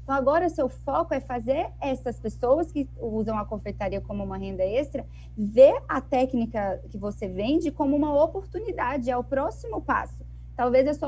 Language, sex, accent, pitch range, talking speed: Portuguese, female, Brazilian, 215-285 Hz, 170 wpm